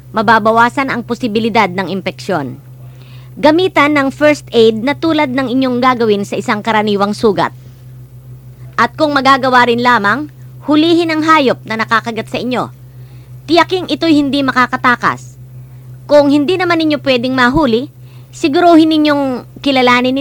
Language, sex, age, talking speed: English, male, 50-69, 130 wpm